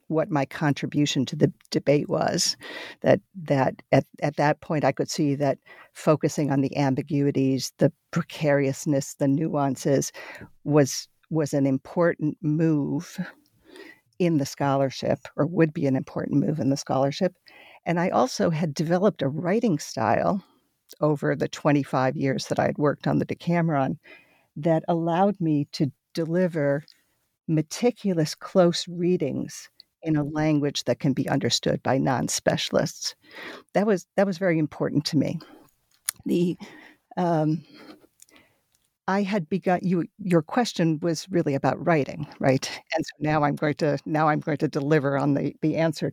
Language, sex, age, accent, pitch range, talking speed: English, female, 50-69, American, 145-170 Hz, 150 wpm